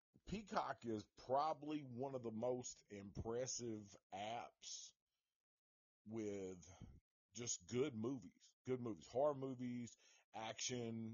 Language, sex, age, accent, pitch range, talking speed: English, male, 40-59, American, 95-130 Hz, 95 wpm